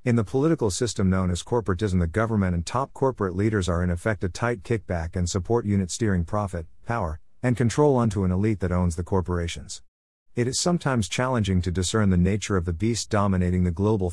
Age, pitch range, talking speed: 50-69, 90-110 Hz, 205 wpm